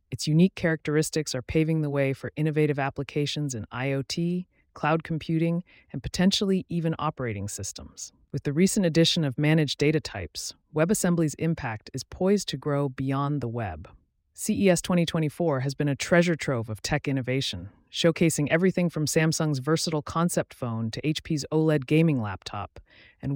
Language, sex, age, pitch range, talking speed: English, female, 30-49, 125-165 Hz, 150 wpm